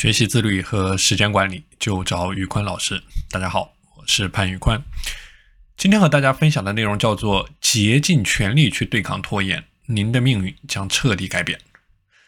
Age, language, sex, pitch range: 20-39, Chinese, male, 105-155 Hz